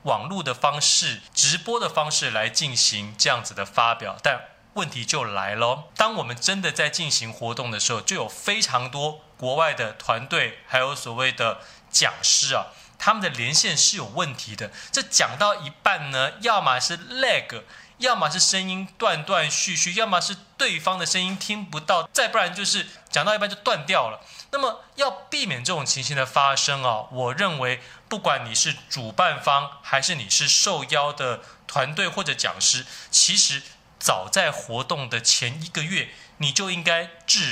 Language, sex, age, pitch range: Chinese, male, 20-39, 130-185 Hz